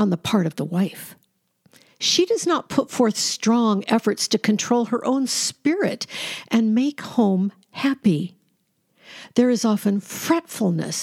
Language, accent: English, American